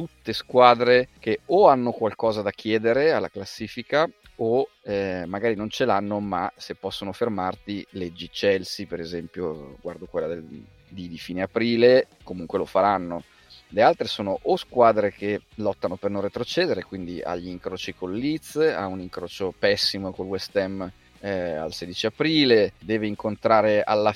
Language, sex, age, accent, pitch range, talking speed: Italian, male, 30-49, native, 95-115 Hz, 155 wpm